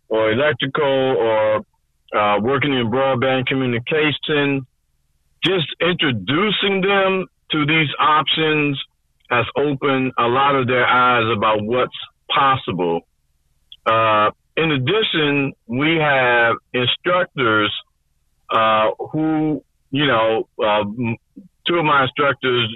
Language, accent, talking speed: English, American, 105 wpm